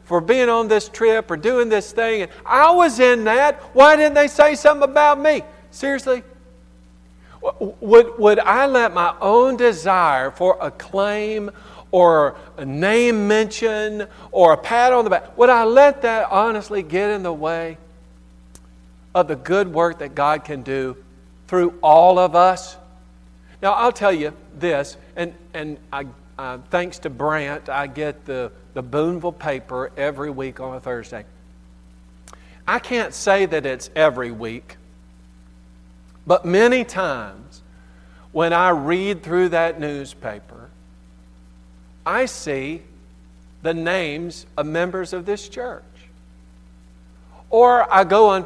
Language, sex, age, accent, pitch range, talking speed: English, male, 50-69, American, 125-205 Hz, 140 wpm